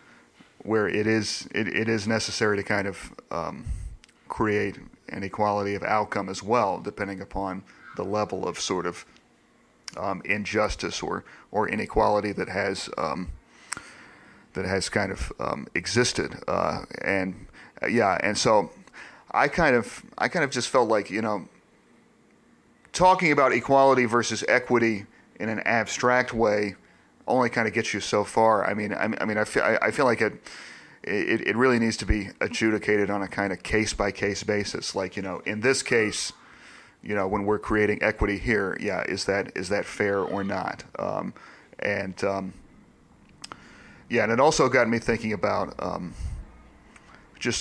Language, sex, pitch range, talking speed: English, male, 100-115 Hz, 170 wpm